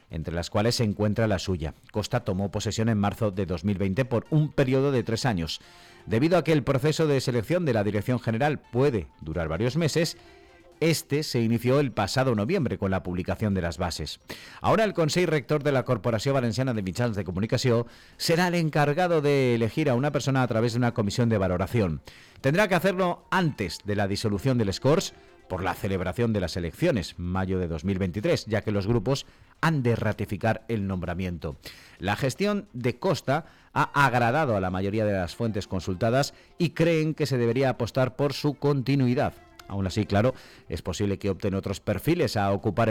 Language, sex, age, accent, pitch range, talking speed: Spanish, male, 40-59, Spanish, 100-135 Hz, 185 wpm